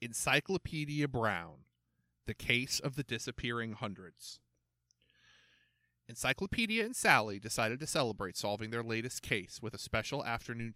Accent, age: American, 30-49